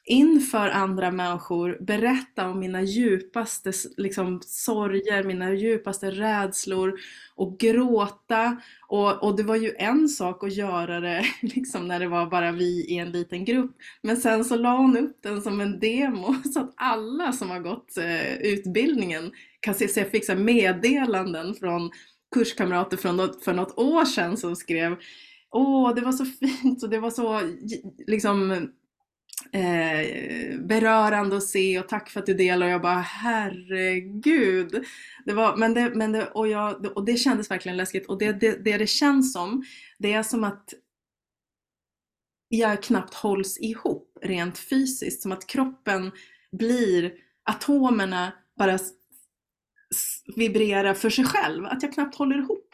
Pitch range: 190-245 Hz